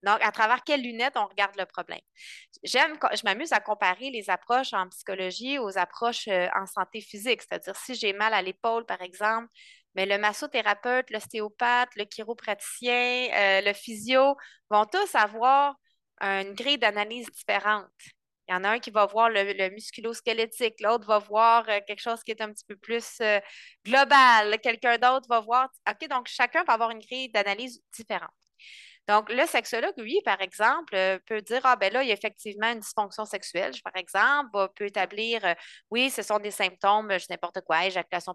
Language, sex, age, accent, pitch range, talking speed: French, female, 20-39, Canadian, 200-245 Hz, 185 wpm